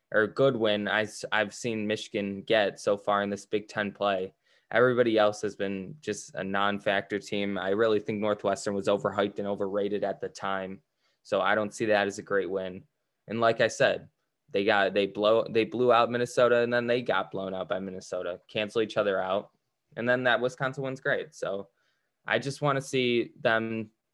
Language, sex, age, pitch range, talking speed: English, male, 10-29, 100-115 Hz, 200 wpm